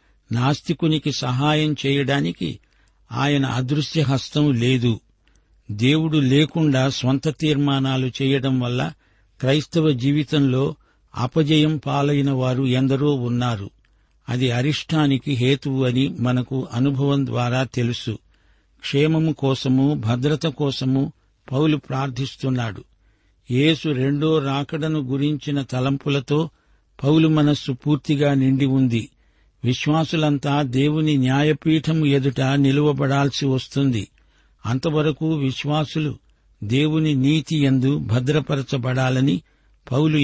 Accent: native